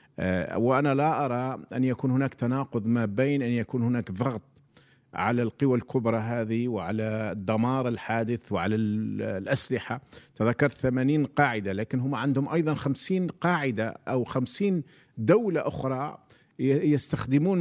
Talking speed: 125 wpm